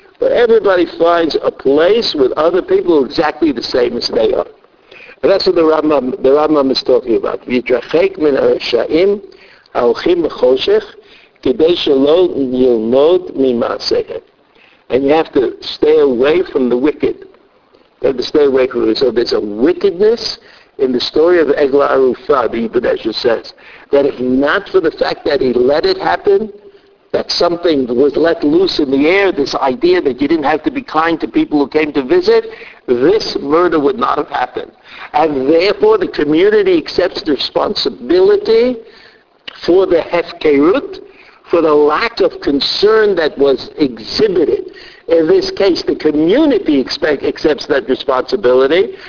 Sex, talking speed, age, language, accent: male, 145 wpm, 60-79, English, American